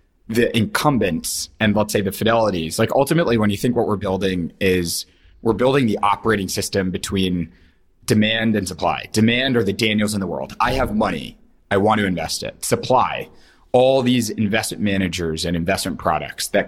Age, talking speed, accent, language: 30-49, 175 wpm, American, English